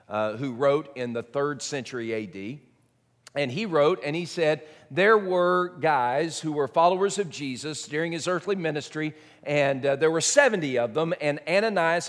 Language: English